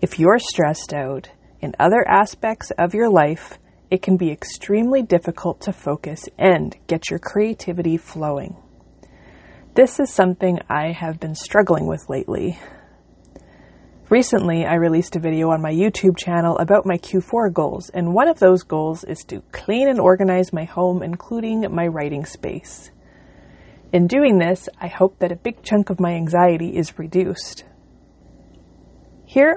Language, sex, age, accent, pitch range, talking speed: English, female, 30-49, American, 165-200 Hz, 150 wpm